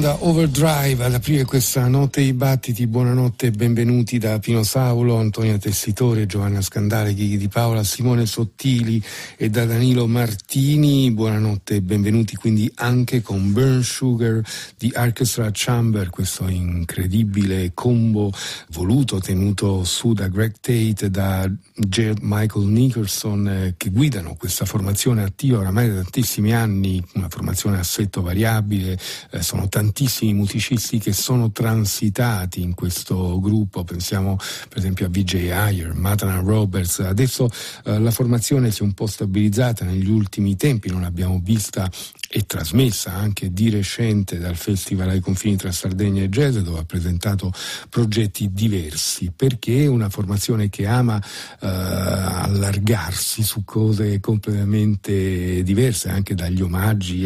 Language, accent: Italian, native